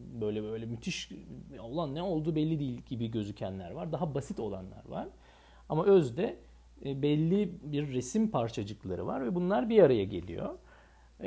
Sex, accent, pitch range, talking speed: male, native, 110-165 Hz, 145 wpm